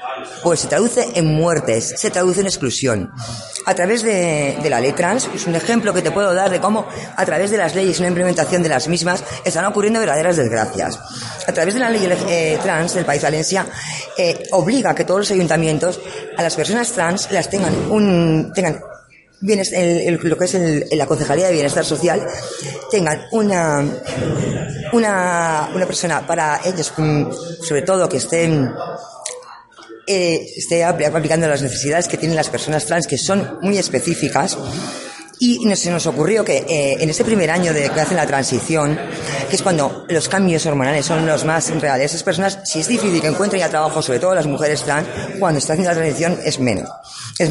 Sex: female